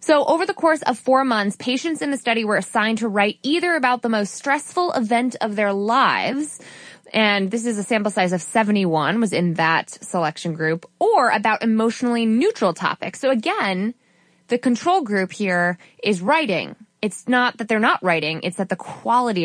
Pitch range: 190-255 Hz